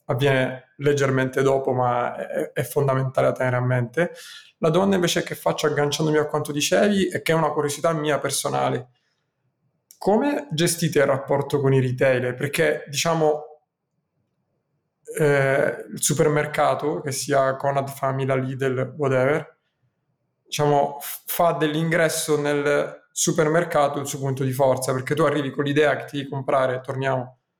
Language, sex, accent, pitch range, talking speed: Italian, male, native, 135-155 Hz, 140 wpm